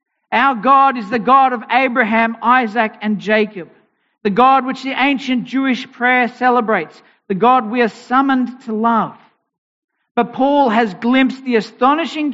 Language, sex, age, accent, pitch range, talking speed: English, male, 50-69, Australian, 210-255 Hz, 150 wpm